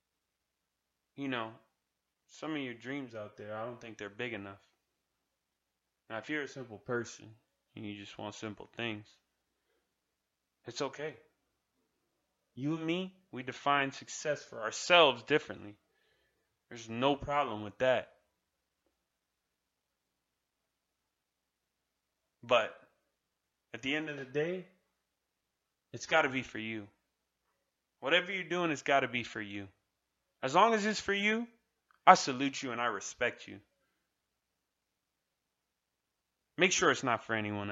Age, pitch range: 20-39, 105-145 Hz